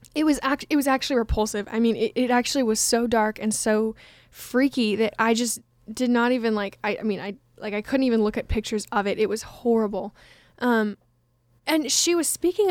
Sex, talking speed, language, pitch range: female, 215 wpm, English, 215-270 Hz